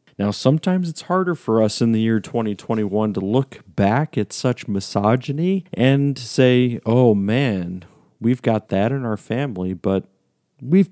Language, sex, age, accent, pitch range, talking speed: English, male, 40-59, American, 100-125 Hz, 155 wpm